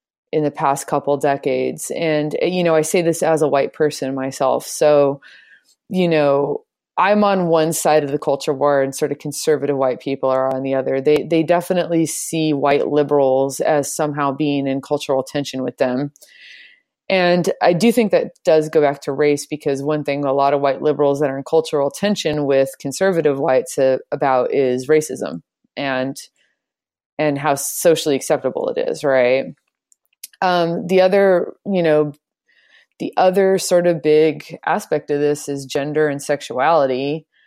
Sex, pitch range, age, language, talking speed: female, 140-165 Hz, 20-39, English, 170 wpm